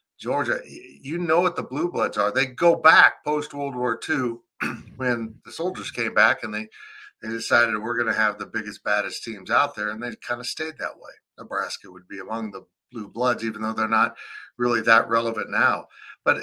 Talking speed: 200 wpm